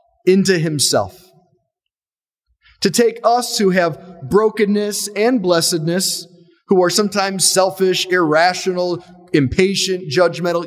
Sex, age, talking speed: male, 40-59, 95 wpm